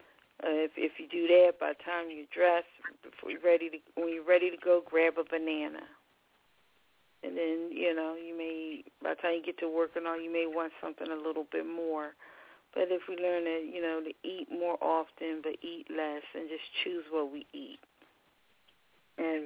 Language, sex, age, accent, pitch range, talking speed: English, female, 40-59, American, 160-180 Hz, 205 wpm